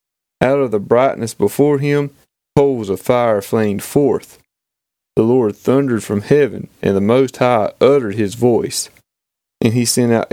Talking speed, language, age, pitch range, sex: 155 wpm, English, 30-49, 105-135 Hz, male